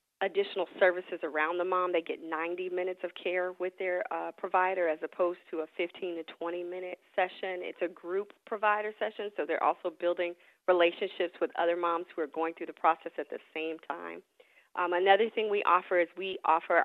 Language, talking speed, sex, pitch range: English, 195 wpm, female, 170-205 Hz